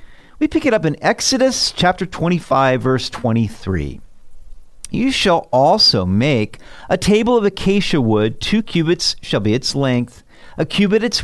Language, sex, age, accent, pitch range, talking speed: English, male, 50-69, American, 115-175 Hz, 150 wpm